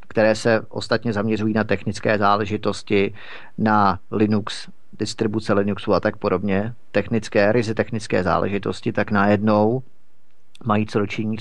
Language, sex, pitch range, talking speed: Czech, male, 100-120 Hz, 120 wpm